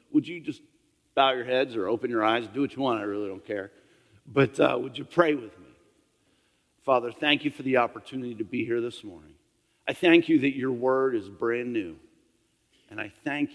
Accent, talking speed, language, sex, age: American, 215 wpm, English, male, 50-69